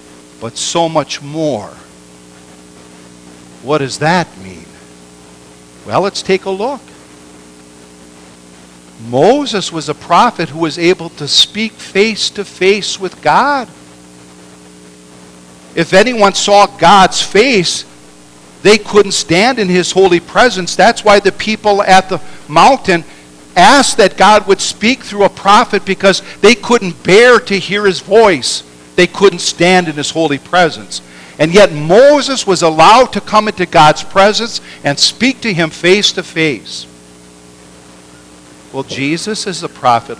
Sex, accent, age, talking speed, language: male, American, 60-79, 135 wpm, English